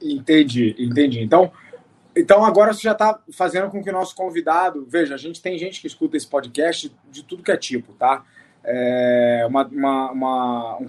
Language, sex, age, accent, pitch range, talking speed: Portuguese, male, 20-39, Brazilian, 150-225 Hz, 165 wpm